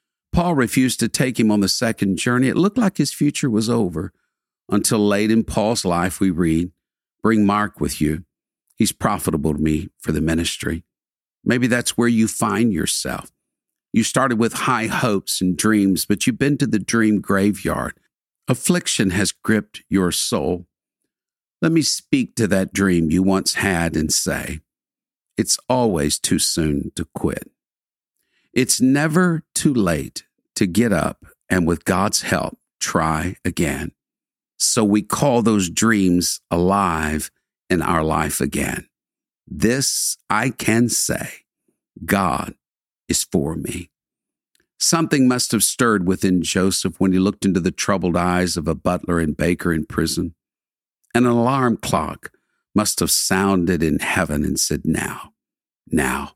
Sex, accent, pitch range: male, American, 85-120 Hz